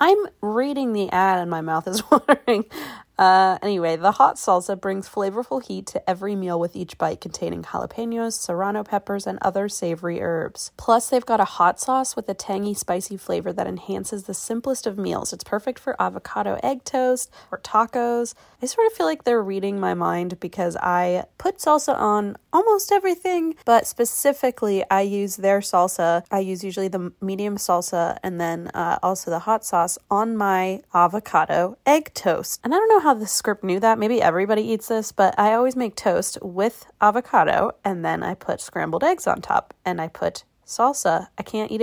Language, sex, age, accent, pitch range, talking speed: English, female, 20-39, American, 185-240 Hz, 190 wpm